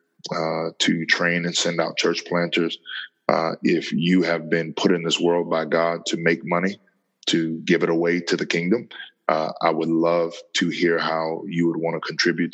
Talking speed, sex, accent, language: 195 wpm, male, American, English